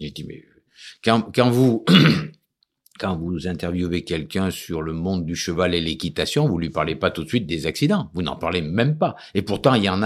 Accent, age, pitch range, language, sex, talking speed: French, 50-69, 95-140 Hz, French, male, 215 wpm